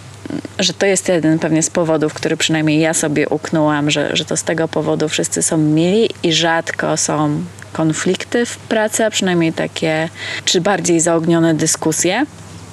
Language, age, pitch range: Polish, 20-39, 150-175 Hz